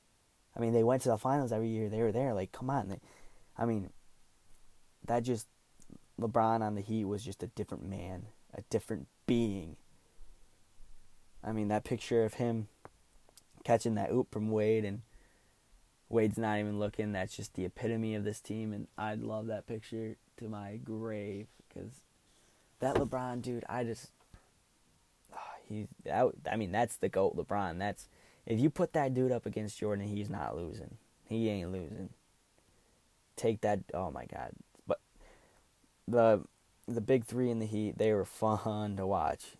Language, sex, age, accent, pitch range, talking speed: English, male, 20-39, American, 100-115 Hz, 165 wpm